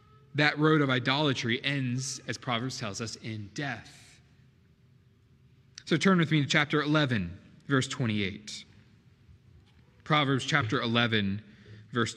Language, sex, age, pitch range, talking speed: English, male, 30-49, 120-150 Hz, 120 wpm